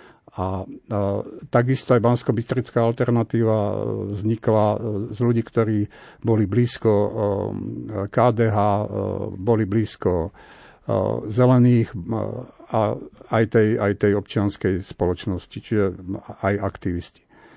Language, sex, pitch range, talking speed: Slovak, male, 105-120 Hz, 90 wpm